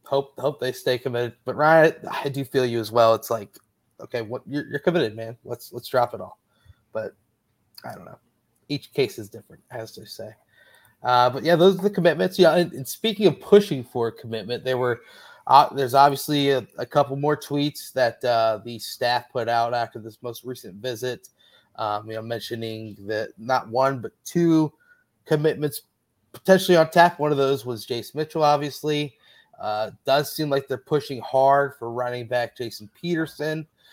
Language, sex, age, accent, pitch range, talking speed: English, male, 20-39, American, 115-145 Hz, 185 wpm